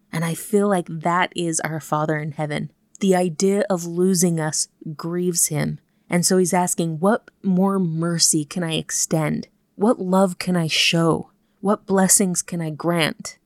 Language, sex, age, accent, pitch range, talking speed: English, female, 30-49, American, 165-195 Hz, 165 wpm